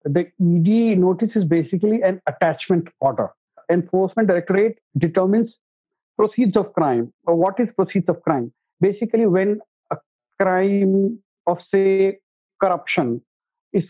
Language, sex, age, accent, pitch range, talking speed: English, male, 50-69, Indian, 160-205 Hz, 120 wpm